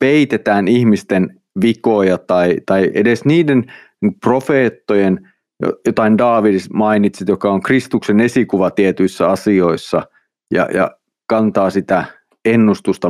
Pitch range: 95-120 Hz